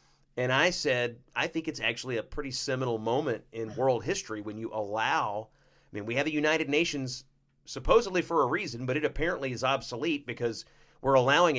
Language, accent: English, American